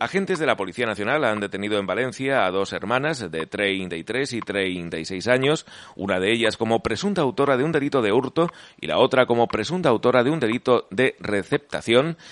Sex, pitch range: male, 100-140 Hz